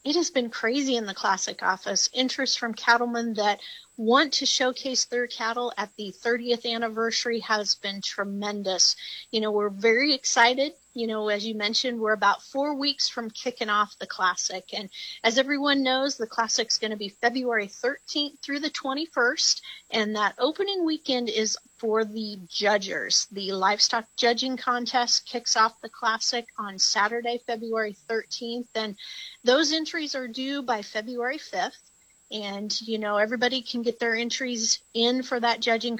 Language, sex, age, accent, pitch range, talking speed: English, female, 40-59, American, 215-250 Hz, 165 wpm